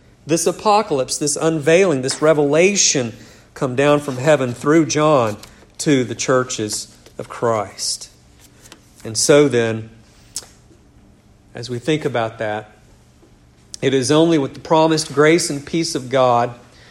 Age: 50-69